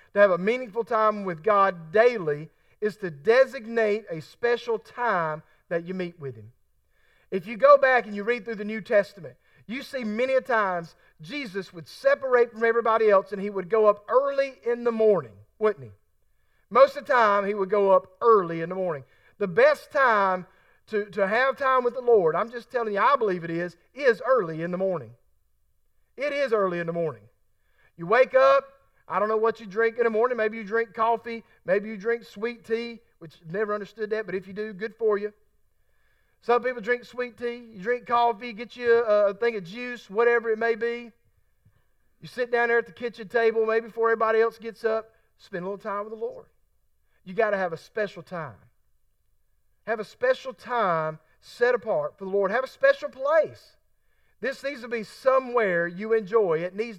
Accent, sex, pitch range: American, male, 190-240 Hz